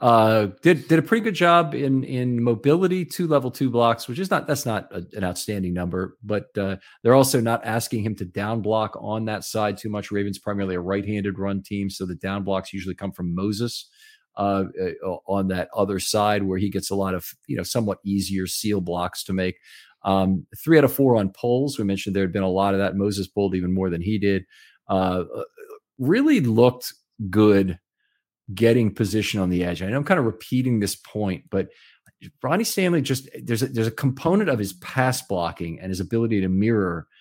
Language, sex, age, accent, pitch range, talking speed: English, male, 40-59, American, 95-130 Hz, 205 wpm